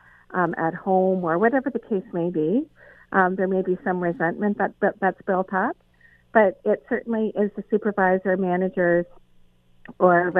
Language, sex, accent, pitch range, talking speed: English, female, American, 170-200 Hz, 160 wpm